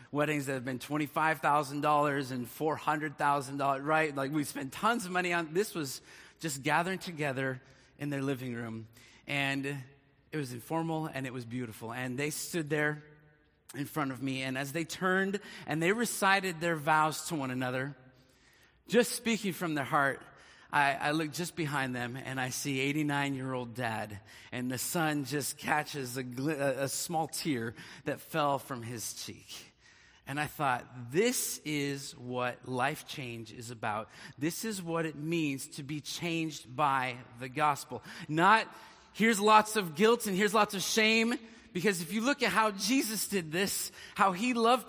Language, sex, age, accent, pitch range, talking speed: English, male, 30-49, American, 135-175 Hz, 165 wpm